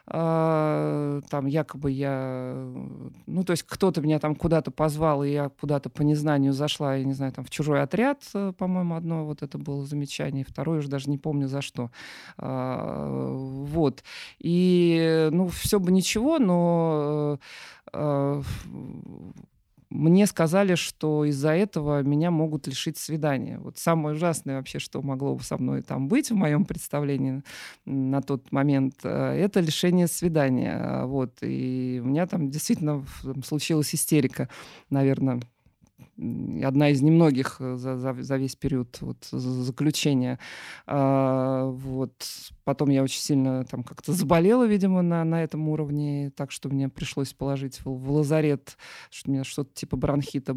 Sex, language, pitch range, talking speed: male, Russian, 135-160 Hz, 140 wpm